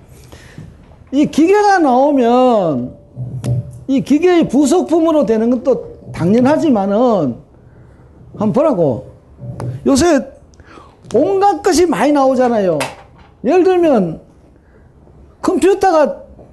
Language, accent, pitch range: Korean, native, 200-320 Hz